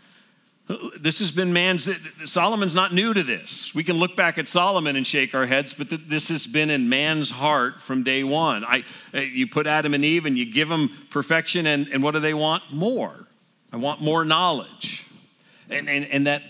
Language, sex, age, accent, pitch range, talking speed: English, male, 40-59, American, 105-165 Hz, 195 wpm